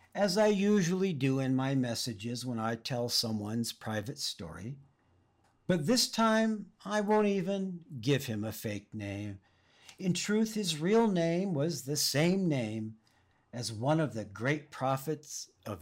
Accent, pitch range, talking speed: American, 105-155 Hz, 150 wpm